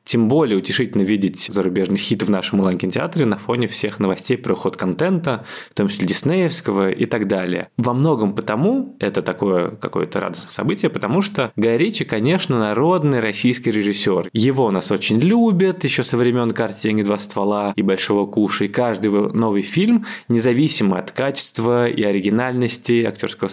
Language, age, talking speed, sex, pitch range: Russian, 20-39, 155 wpm, male, 95-125 Hz